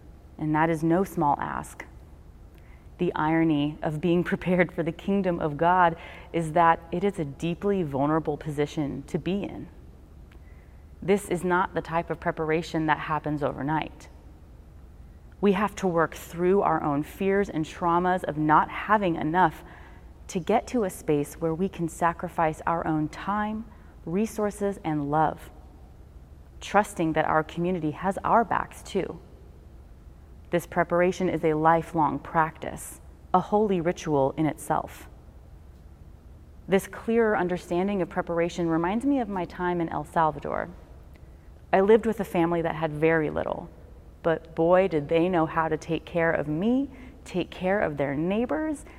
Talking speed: 150 wpm